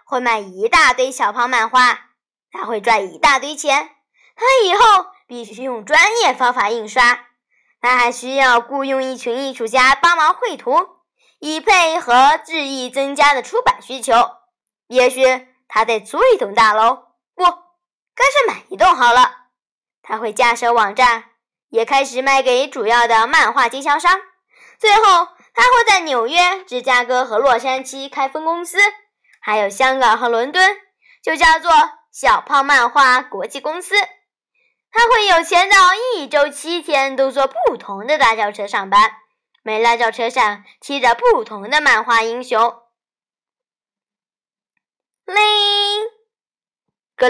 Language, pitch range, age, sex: Chinese, 240-360 Hz, 10-29, male